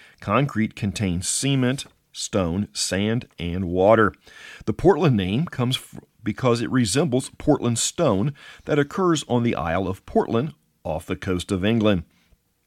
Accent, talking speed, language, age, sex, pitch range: American, 135 wpm, English, 50-69, male, 95-125 Hz